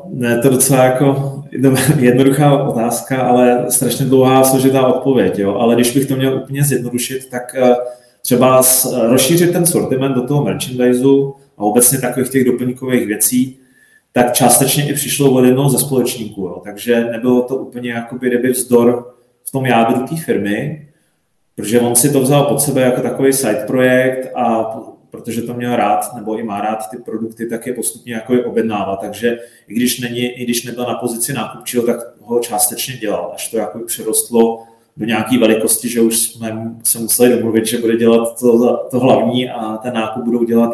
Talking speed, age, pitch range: 170 wpm, 30-49, 115-130 Hz